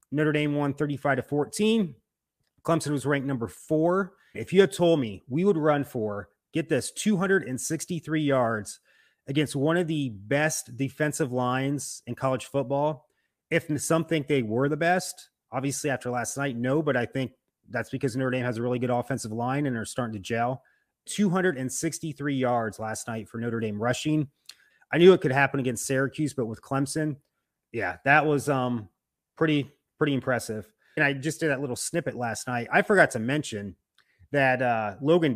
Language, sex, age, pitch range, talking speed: English, male, 30-49, 120-155 Hz, 180 wpm